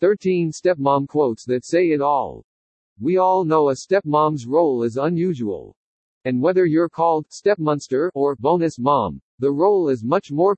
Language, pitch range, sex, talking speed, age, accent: English, 130-175 Hz, male, 160 wpm, 50-69, American